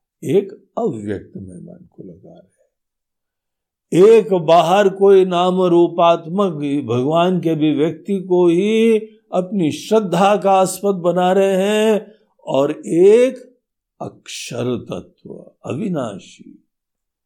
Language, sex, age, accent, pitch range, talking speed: Hindi, male, 60-79, native, 135-210 Hz, 105 wpm